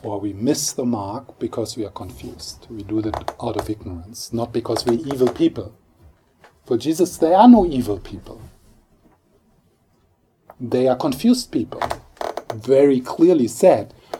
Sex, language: male, English